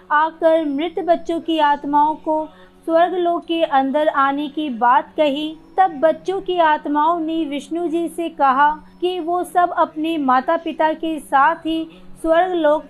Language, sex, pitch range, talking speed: Hindi, female, 295-335 Hz, 160 wpm